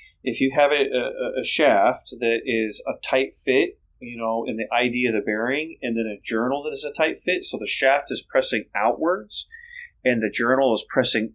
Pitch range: 105-135 Hz